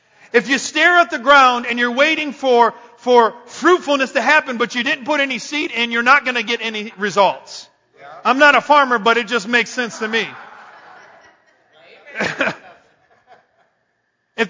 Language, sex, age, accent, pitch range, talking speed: English, male, 40-59, American, 205-290 Hz, 160 wpm